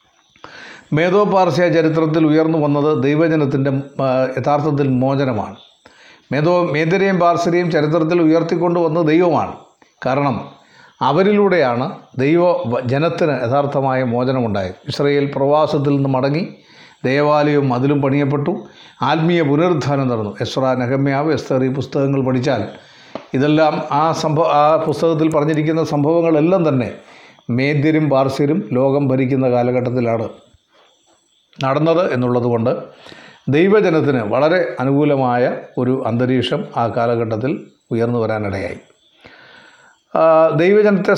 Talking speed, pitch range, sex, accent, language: 85 wpm, 135-165 Hz, male, native, Malayalam